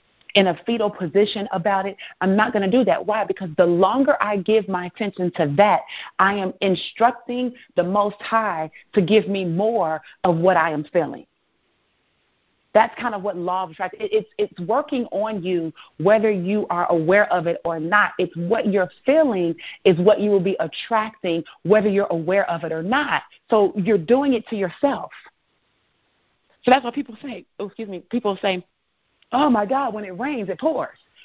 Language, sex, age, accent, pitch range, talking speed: English, female, 40-59, American, 180-220 Hz, 190 wpm